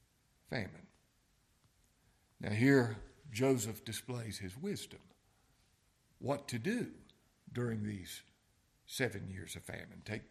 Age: 60-79